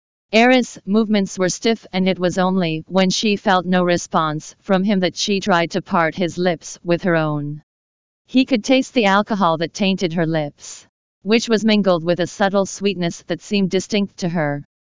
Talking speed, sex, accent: 185 wpm, female, American